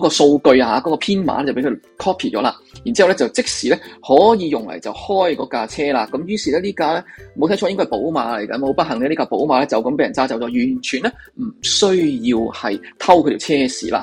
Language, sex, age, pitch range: Chinese, male, 20-39, 140-225 Hz